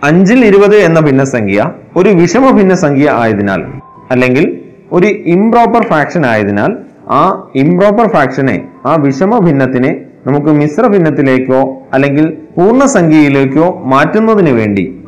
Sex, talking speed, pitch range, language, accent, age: male, 105 wpm, 125-170 Hz, Malayalam, native, 30-49